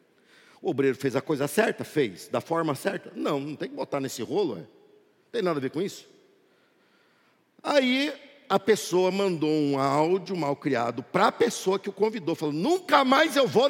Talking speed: 190 wpm